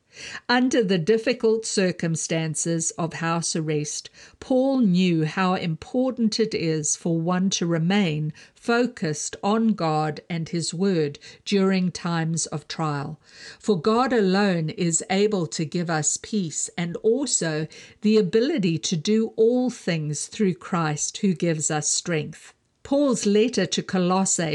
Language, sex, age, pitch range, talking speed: English, female, 50-69, 160-220 Hz, 130 wpm